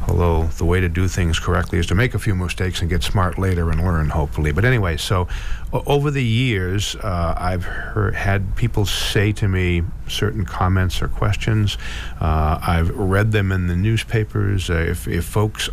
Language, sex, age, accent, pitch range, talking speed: English, male, 50-69, American, 85-105 Hz, 185 wpm